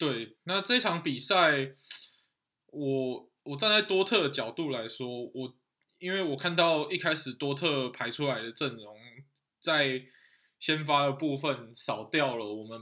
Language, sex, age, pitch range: Chinese, male, 20-39, 120-145 Hz